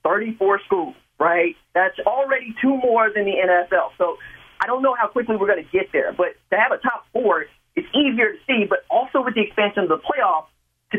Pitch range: 180-255 Hz